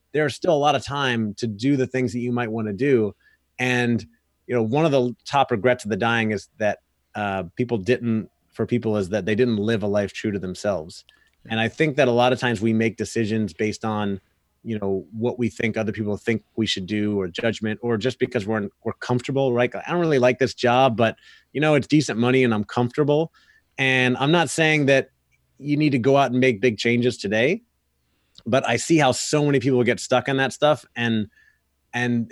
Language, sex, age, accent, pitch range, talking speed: English, male, 30-49, American, 110-135 Hz, 225 wpm